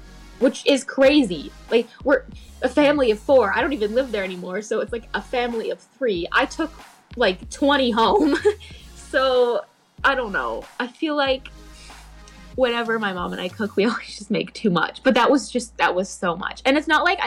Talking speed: 200 wpm